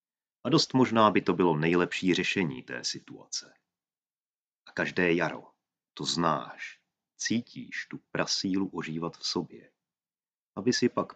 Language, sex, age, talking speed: Czech, male, 30-49, 130 wpm